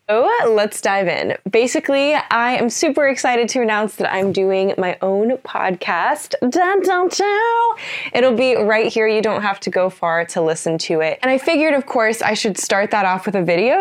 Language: English